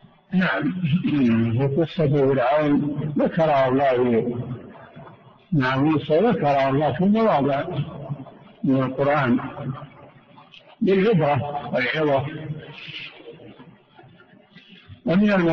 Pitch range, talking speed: 135-175 Hz, 60 wpm